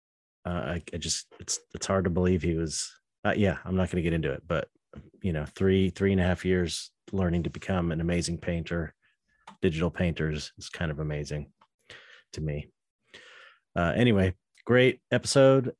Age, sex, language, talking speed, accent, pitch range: 30-49, male, English, 180 wpm, American, 80-100 Hz